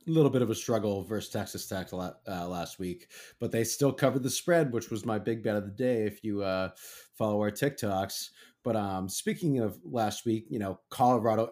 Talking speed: 225 wpm